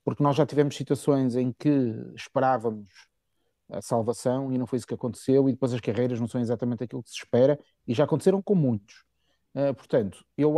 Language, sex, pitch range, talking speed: Portuguese, male, 115-145 Hz, 195 wpm